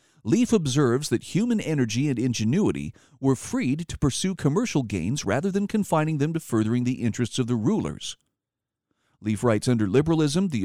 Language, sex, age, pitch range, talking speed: English, male, 50-69, 120-175 Hz, 165 wpm